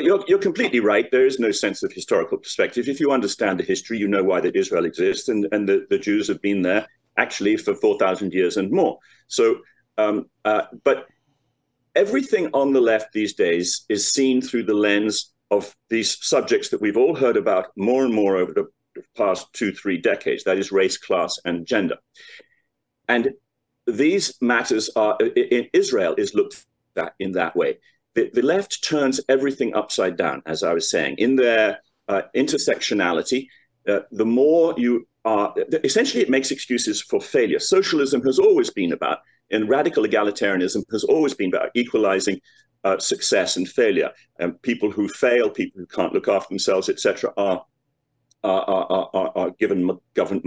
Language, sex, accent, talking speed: English, male, British, 175 wpm